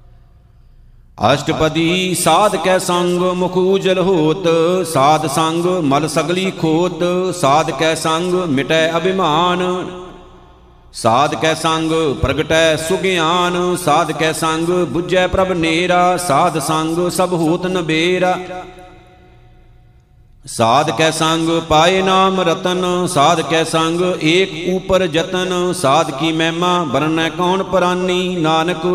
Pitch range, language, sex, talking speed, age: 160-180 Hz, Punjabi, male, 85 wpm, 50-69